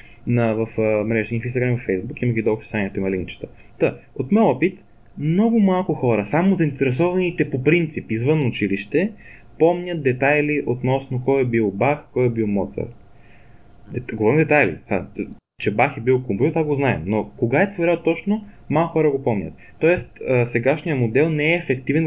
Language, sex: Bulgarian, male